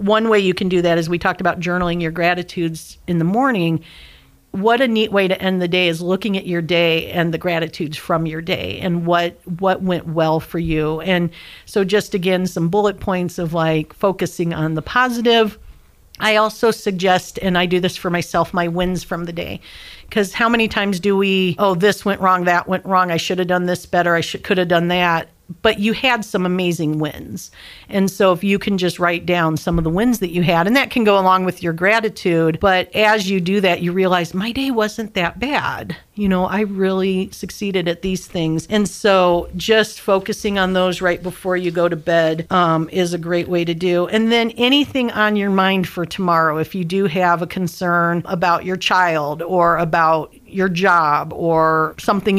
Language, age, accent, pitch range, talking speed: English, 50-69, American, 170-200 Hz, 210 wpm